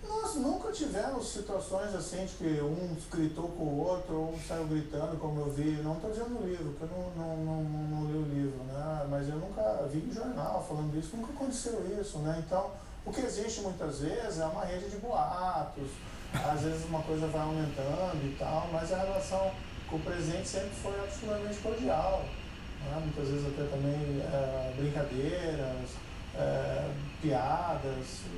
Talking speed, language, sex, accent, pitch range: 180 wpm, Portuguese, male, Brazilian, 145-185 Hz